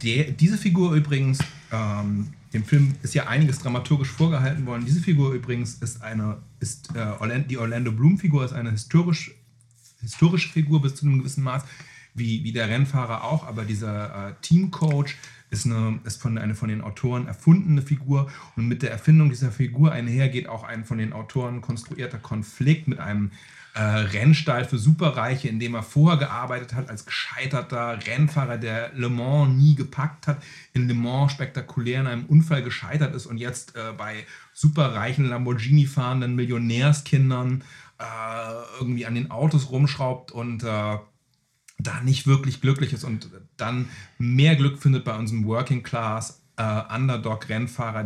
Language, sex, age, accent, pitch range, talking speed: German, male, 30-49, German, 115-140 Hz, 160 wpm